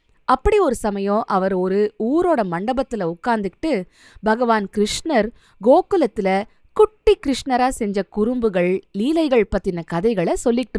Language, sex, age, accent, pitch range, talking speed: Tamil, female, 20-39, native, 170-250 Hz, 105 wpm